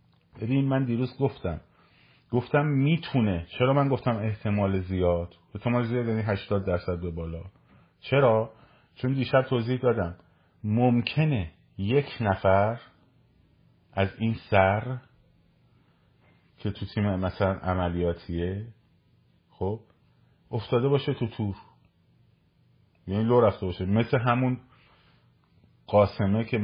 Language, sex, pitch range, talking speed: Persian, male, 100-130 Hz, 105 wpm